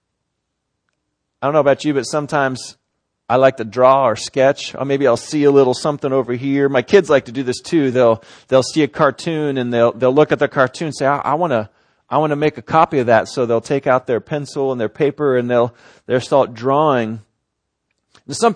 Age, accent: 40-59, American